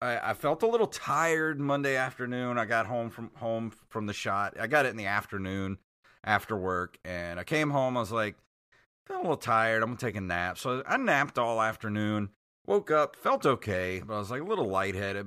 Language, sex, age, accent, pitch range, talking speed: English, male, 30-49, American, 100-125 Hz, 215 wpm